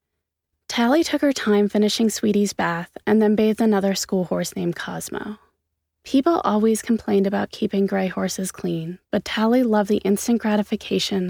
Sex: female